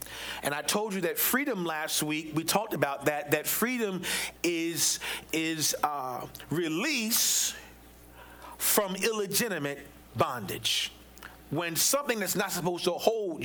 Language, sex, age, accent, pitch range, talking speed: English, male, 40-59, American, 170-225 Hz, 125 wpm